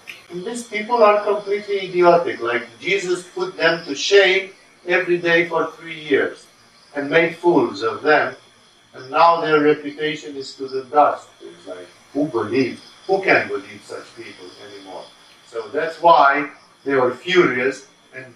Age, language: 50-69, English